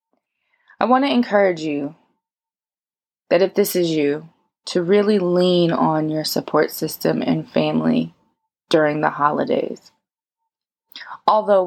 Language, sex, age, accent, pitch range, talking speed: English, female, 20-39, American, 150-190 Hz, 115 wpm